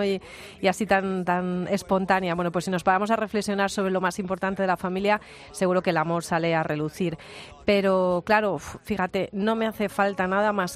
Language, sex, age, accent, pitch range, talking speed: Spanish, female, 30-49, Spanish, 170-200 Hz, 200 wpm